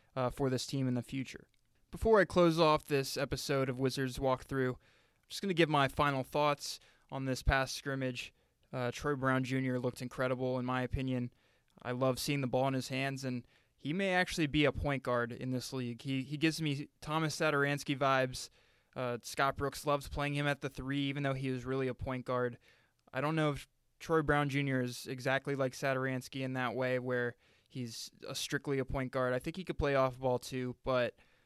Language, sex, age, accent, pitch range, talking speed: English, male, 20-39, American, 125-145 Hz, 210 wpm